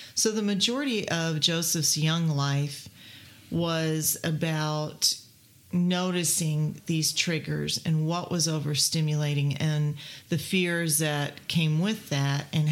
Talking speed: 115 wpm